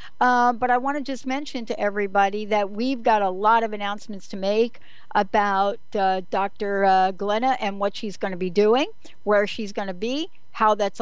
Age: 60-79